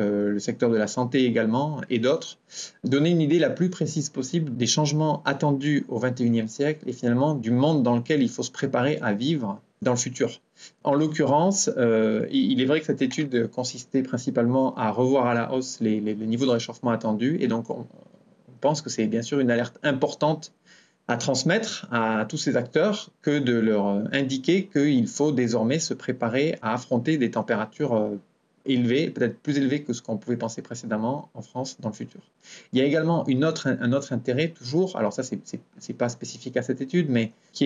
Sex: male